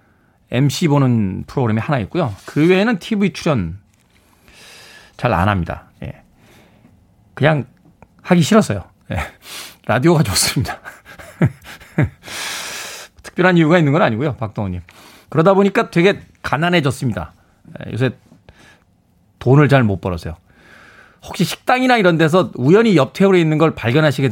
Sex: male